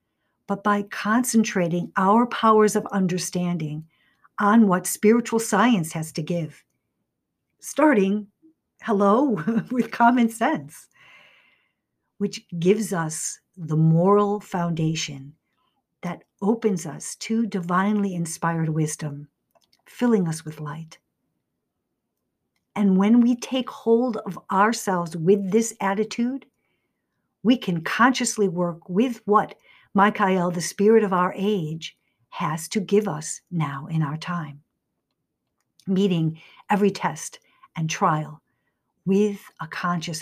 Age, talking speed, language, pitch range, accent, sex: 60-79, 110 wpm, English, 160-210 Hz, American, female